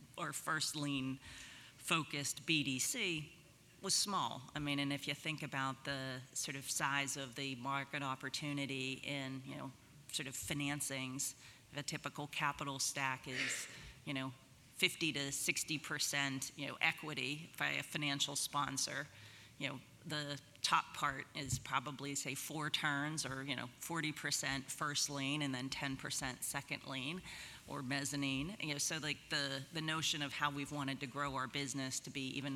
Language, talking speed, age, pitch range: English, 160 wpm, 40-59, 135-150 Hz